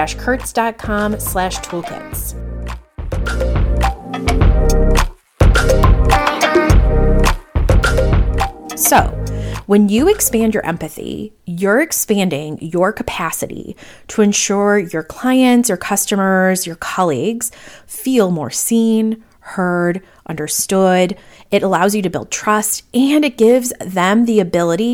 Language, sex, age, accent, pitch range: English, female, 30-49, American, 160-220 Hz